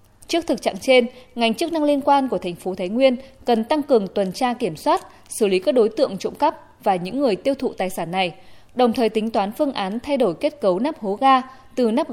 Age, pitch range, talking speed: 20-39, 205-270 Hz, 250 wpm